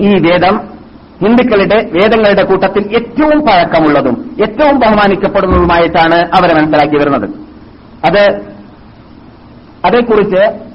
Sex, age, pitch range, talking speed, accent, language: male, 50-69, 170-220 Hz, 80 wpm, native, Malayalam